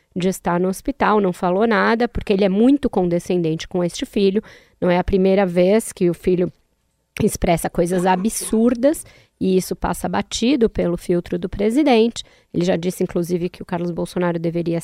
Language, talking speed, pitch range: Portuguese, 175 wpm, 175-215 Hz